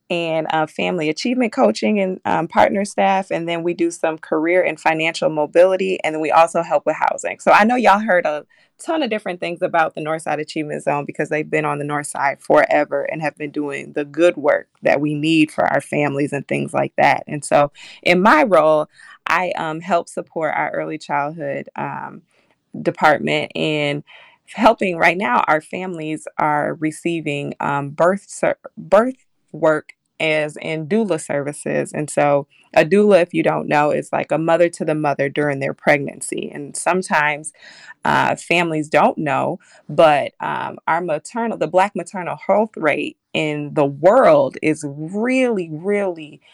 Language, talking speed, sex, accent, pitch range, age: English, 175 wpm, female, American, 150-185 Hz, 20-39